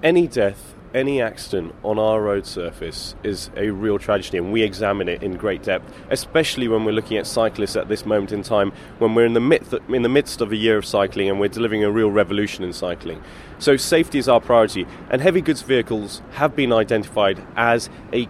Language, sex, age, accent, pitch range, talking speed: English, male, 30-49, British, 105-135 Hz, 205 wpm